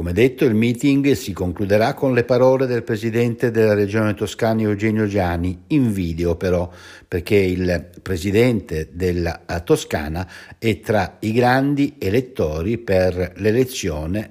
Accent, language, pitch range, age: native, Italian, 95-120 Hz, 60-79